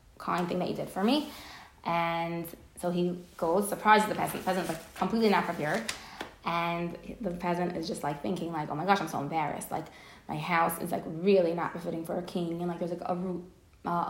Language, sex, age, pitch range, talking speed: English, female, 20-39, 180-245 Hz, 220 wpm